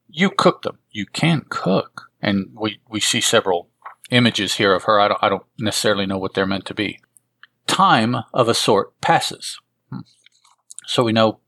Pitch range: 100-135 Hz